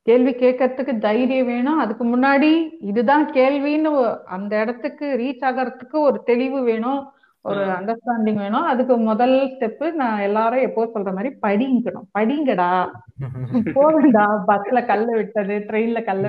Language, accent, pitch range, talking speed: Tamil, native, 210-265 Hz, 65 wpm